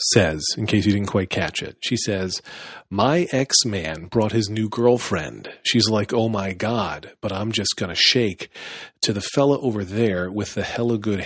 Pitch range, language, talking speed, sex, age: 95-120 Hz, English, 190 wpm, male, 40-59